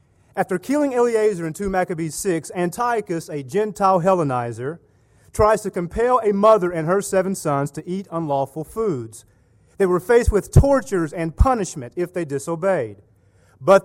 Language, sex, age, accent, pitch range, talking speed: English, male, 30-49, American, 145-210 Hz, 150 wpm